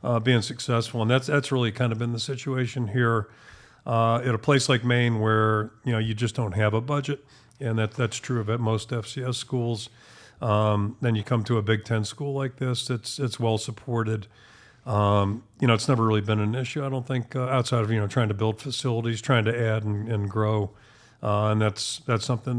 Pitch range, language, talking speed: 110-125 Hz, English, 220 wpm